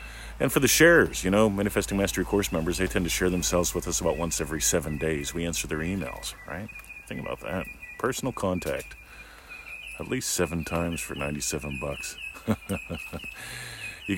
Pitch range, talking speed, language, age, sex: 75-105 Hz, 170 wpm, English, 40-59, male